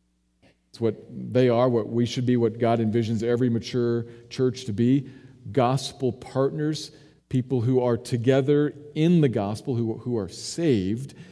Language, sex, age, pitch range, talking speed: English, male, 50-69, 100-130 Hz, 155 wpm